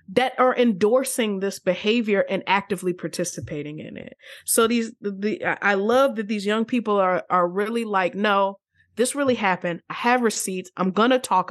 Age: 20-39